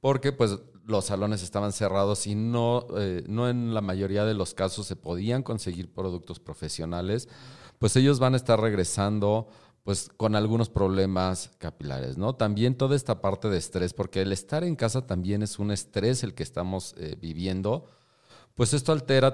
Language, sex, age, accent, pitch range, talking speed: Spanish, male, 40-59, Mexican, 95-115 Hz, 160 wpm